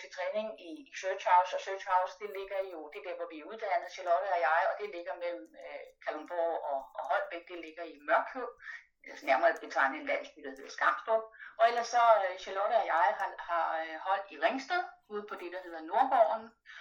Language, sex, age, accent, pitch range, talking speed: Danish, female, 30-49, native, 190-285 Hz, 195 wpm